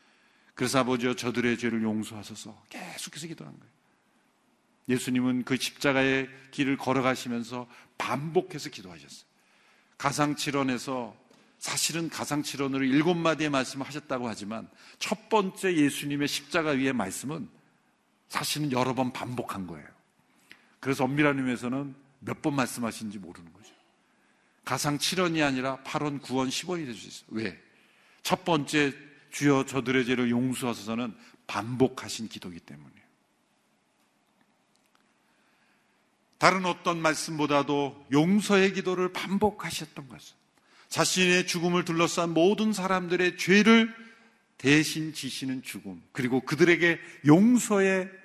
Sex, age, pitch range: male, 50-69, 125-165 Hz